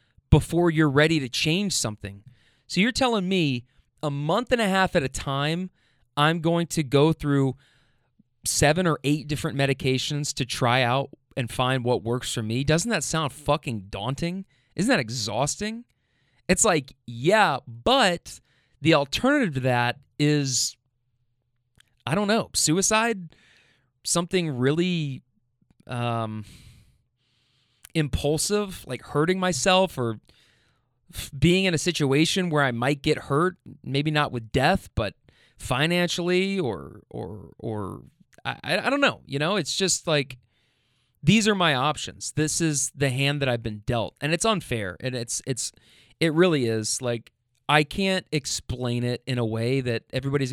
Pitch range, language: 120-165 Hz, English